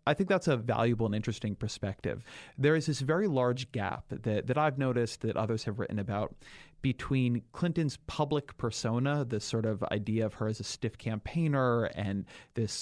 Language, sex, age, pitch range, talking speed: English, male, 30-49, 105-130 Hz, 185 wpm